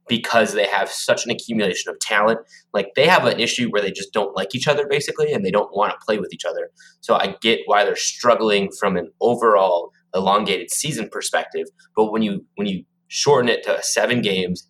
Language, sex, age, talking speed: English, male, 20-39, 210 wpm